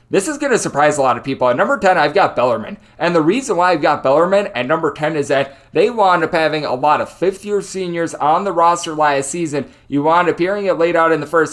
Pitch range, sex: 140-170 Hz, male